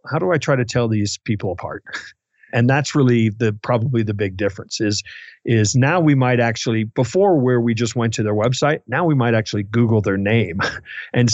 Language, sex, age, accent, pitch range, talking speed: English, male, 40-59, American, 110-130 Hz, 205 wpm